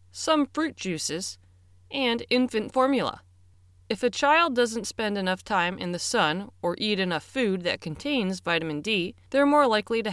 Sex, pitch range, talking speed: female, 150-205 Hz, 165 wpm